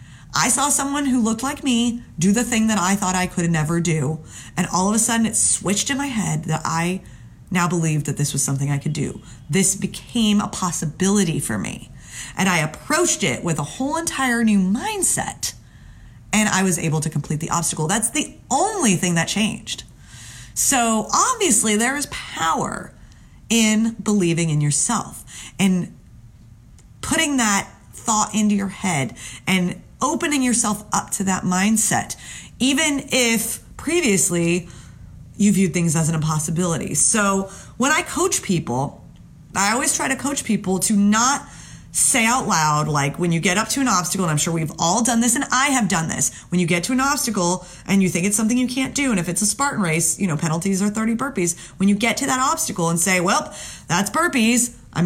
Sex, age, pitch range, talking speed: female, 30-49, 170-235 Hz, 190 wpm